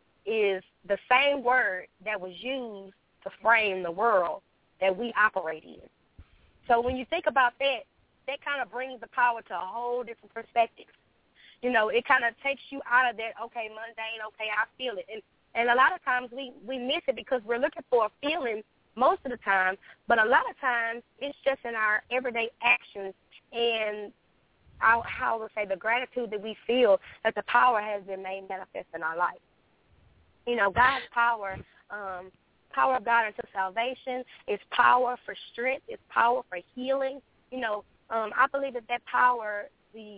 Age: 20-39